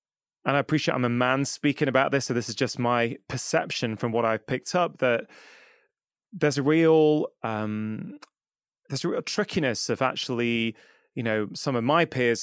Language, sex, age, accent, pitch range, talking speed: English, male, 20-39, British, 120-155 Hz, 180 wpm